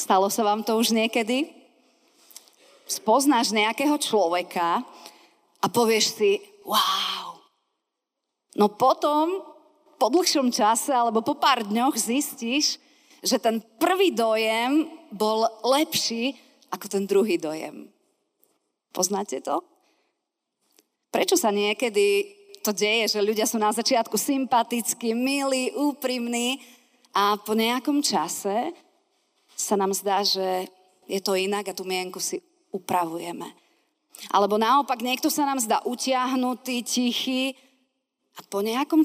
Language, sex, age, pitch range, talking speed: Slovak, female, 30-49, 205-275 Hz, 115 wpm